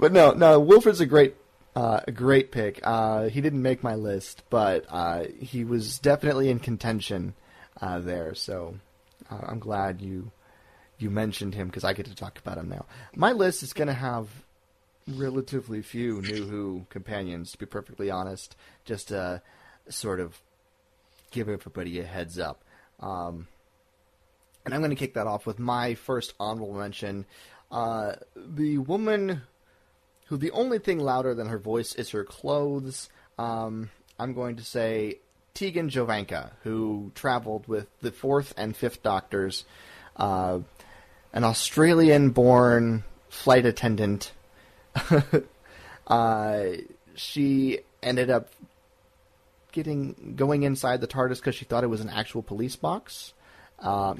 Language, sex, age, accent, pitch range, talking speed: English, male, 30-49, American, 100-130 Hz, 145 wpm